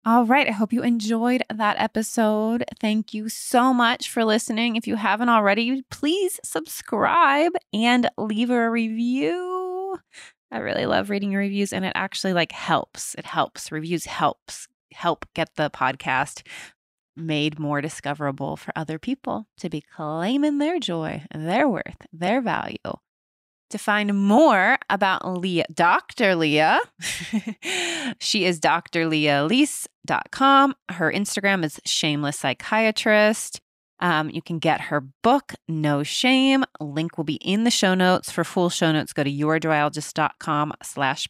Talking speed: 135 wpm